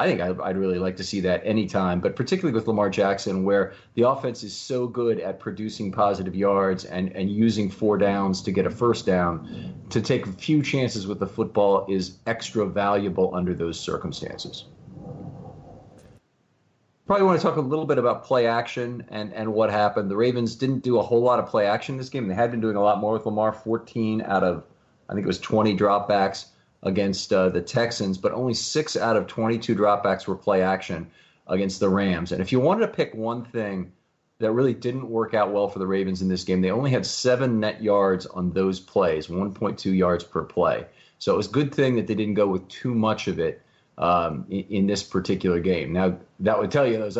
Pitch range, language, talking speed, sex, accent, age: 95-115 Hz, English, 215 wpm, male, American, 30-49